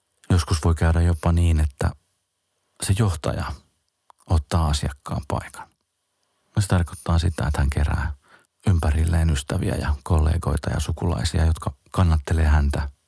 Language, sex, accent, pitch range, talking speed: Finnish, male, native, 80-100 Hz, 120 wpm